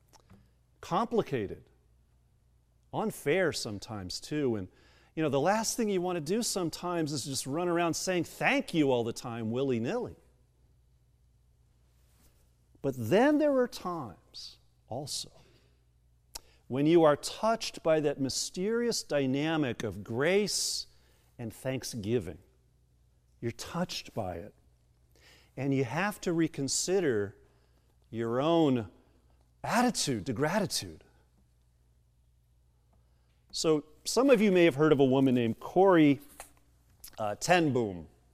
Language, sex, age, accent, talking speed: English, male, 50-69, American, 115 wpm